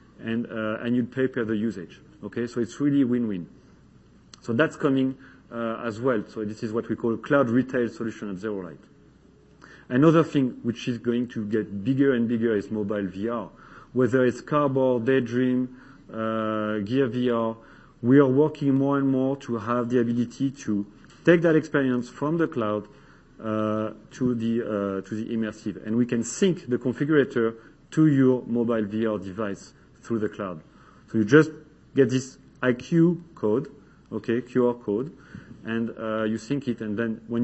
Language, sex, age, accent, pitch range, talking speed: English, male, 40-59, French, 110-135 Hz, 175 wpm